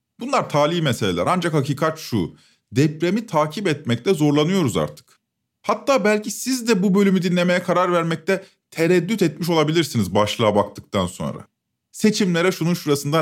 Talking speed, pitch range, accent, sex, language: 130 wpm, 145-185 Hz, native, male, Turkish